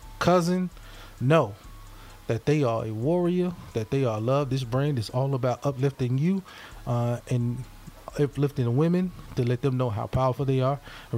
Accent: American